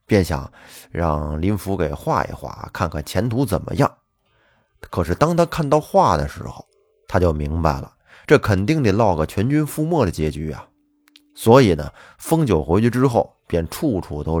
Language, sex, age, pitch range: Chinese, male, 30-49, 80-135 Hz